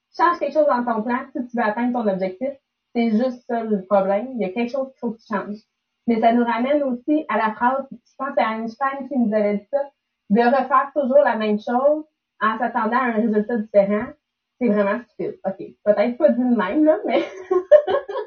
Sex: female